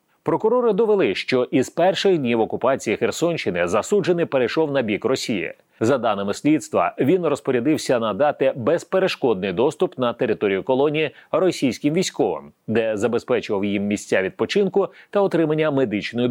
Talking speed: 130 wpm